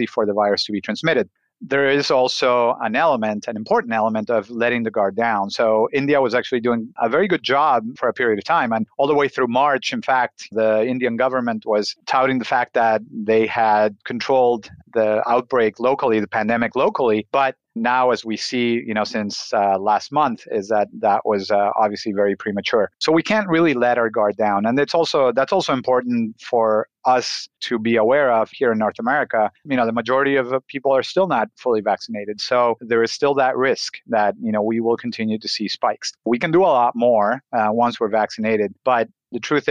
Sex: male